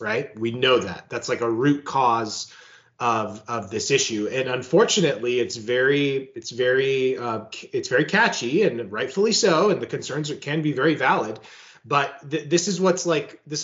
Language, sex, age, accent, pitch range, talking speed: English, male, 30-49, American, 125-170 Hz, 180 wpm